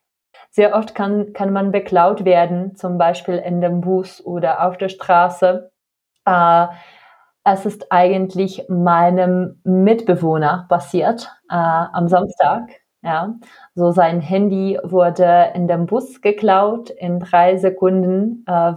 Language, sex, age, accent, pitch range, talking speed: Czech, female, 30-49, German, 175-190 Hz, 125 wpm